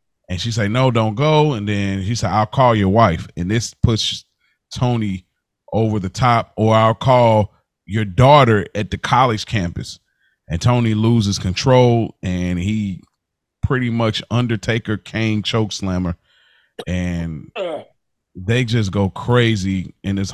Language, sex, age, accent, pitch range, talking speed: English, male, 30-49, American, 95-125 Hz, 150 wpm